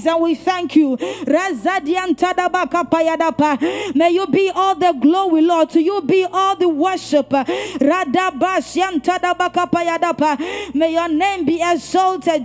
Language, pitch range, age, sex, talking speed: English, 315-370 Hz, 20-39, female, 105 wpm